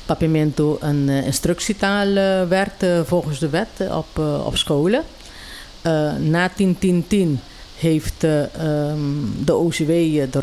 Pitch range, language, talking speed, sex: 145-185 Hz, Dutch, 115 wpm, female